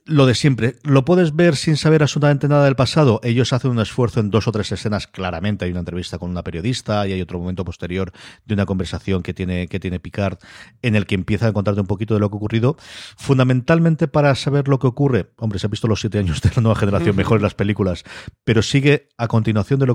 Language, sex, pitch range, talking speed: Spanish, male, 95-120 Hz, 240 wpm